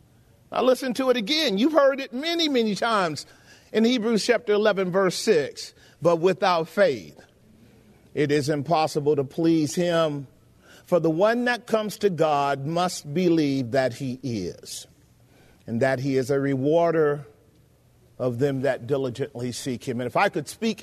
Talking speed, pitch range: 160 wpm, 140-225 Hz